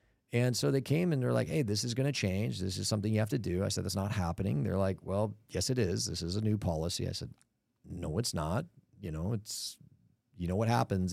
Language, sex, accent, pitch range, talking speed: English, male, American, 100-125 Hz, 260 wpm